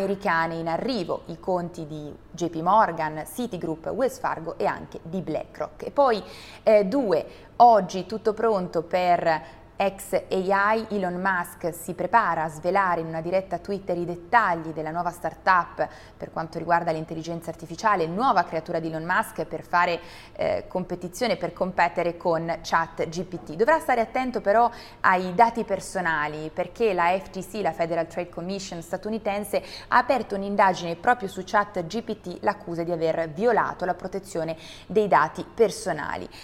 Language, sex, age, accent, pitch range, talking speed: Italian, female, 20-39, native, 165-205 Hz, 145 wpm